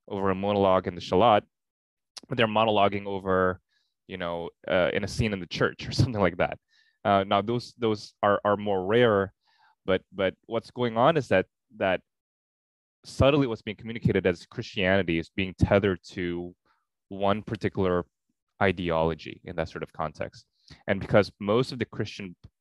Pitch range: 90-115 Hz